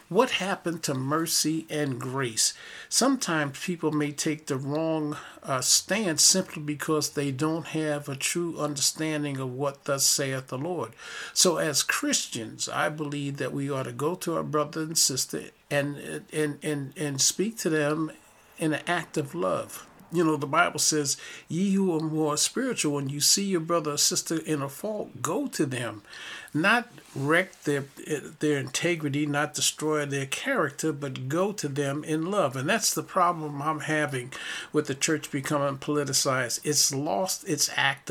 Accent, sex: American, male